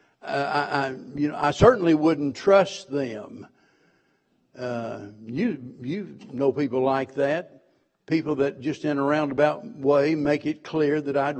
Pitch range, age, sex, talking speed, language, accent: 140-185 Hz, 60-79, male, 145 wpm, English, American